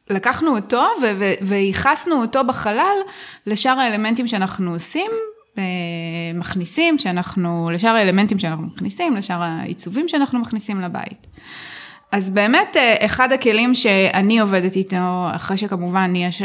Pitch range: 190-250 Hz